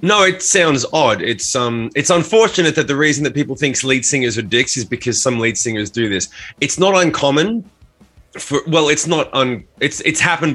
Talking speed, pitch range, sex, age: 205 wpm, 115-150 Hz, male, 20-39